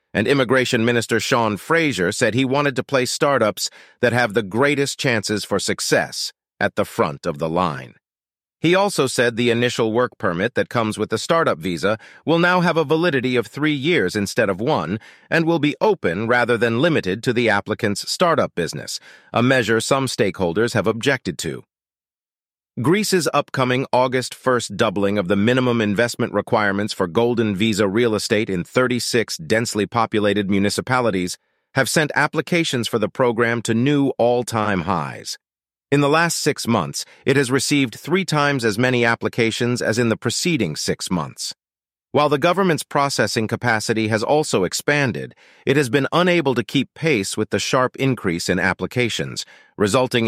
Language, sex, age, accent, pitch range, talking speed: English, male, 40-59, American, 105-135 Hz, 165 wpm